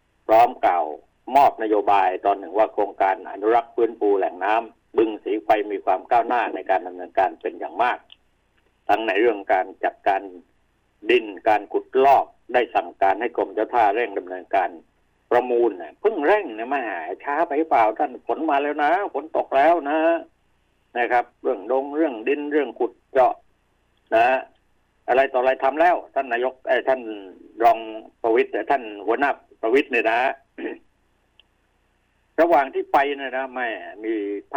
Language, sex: Thai, male